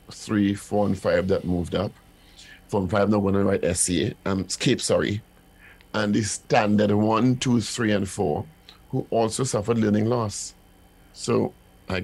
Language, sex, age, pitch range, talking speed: English, male, 50-69, 95-115 Hz, 165 wpm